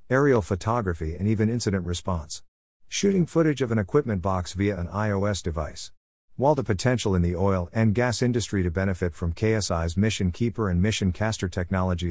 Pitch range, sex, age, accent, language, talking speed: 85-110 Hz, male, 50-69, American, English, 175 wpm